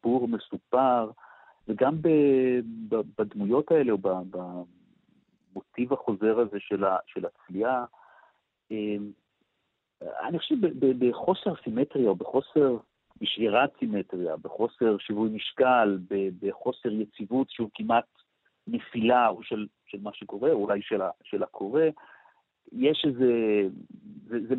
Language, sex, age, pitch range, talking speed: Hebrew, male, 50-69, 100-130 Hz, 100 wpm